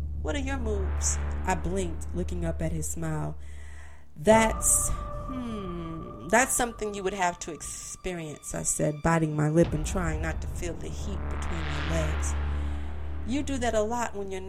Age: 40-59